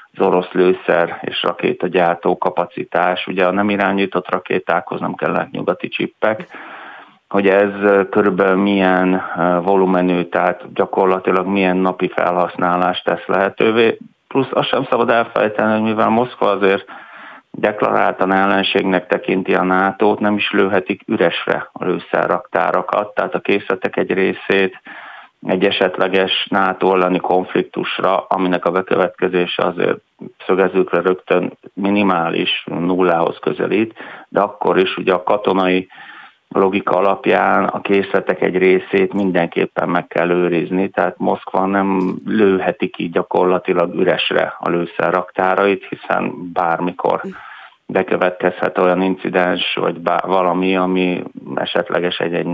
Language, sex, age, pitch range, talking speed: Hungarian, male, 30-49, 90-100 Hz, 115 wpm